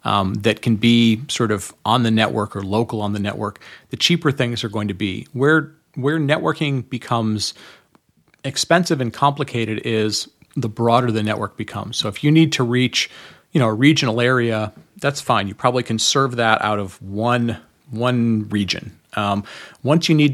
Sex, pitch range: male, 105-130 Hz